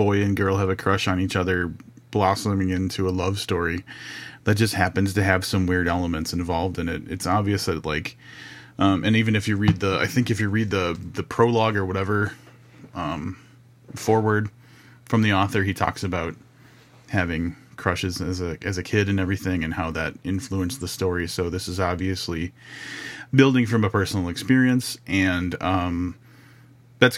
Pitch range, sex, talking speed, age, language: 90-110 Hz, male, 180 wpm, 30-49, English